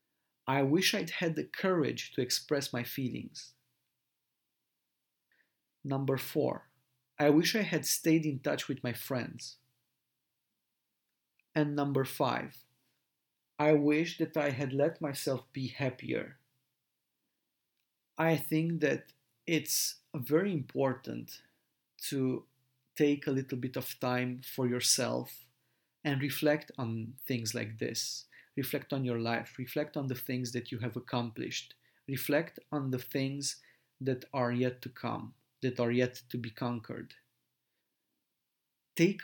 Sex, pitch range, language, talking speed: male, 125-145 Hz, English, 125 wpm